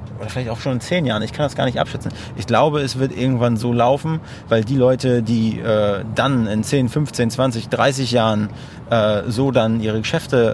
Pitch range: 110-125 Hz